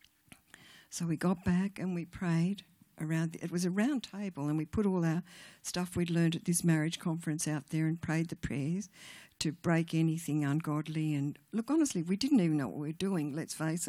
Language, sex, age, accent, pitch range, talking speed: English, female, 50-69, Australian, 155-180 Hz, 205 wpm